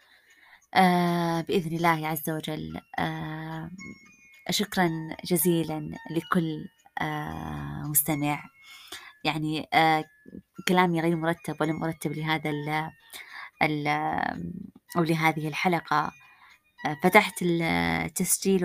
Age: 20-39